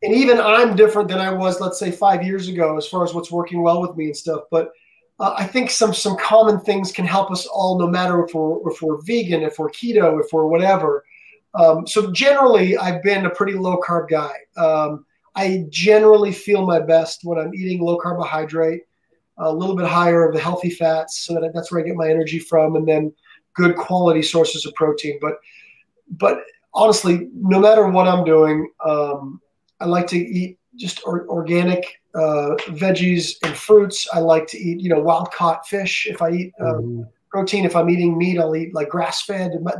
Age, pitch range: 30-49, 160-190 Hz